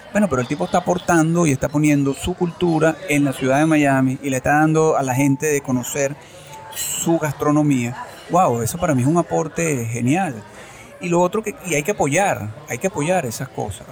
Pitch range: 125-155 Hz